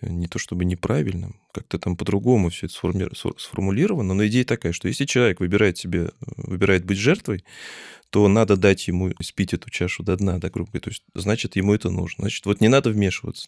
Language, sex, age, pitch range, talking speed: Russian, male, 20-39, 90-110 Hz, 175 wpm